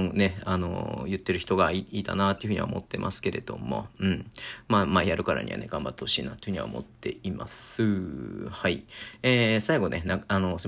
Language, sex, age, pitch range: Japanese, male, 40-59, 95-115 Hz